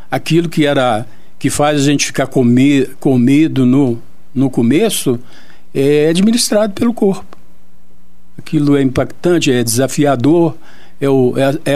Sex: male